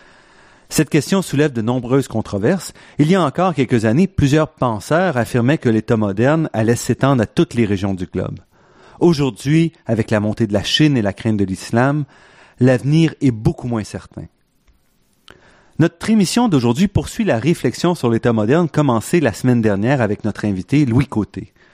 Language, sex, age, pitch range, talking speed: French, male, 40-59, 110-150 Hz, 170 wpm